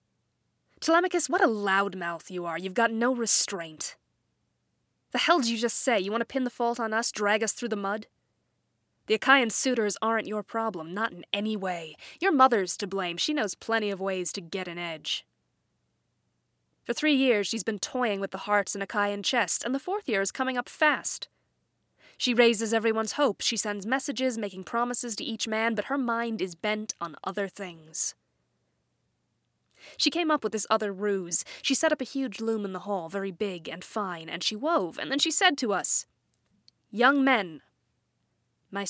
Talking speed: 190 wpm